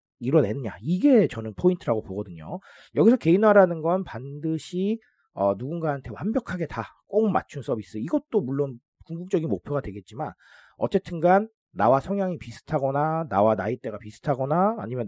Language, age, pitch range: Korean, 40-59, 115-180 Hz